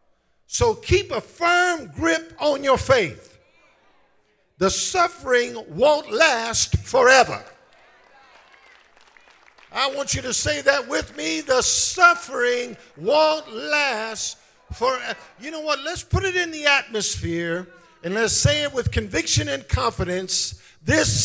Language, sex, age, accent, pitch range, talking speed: English, male, 50-69, American, 215-295 Hz, 125 wpm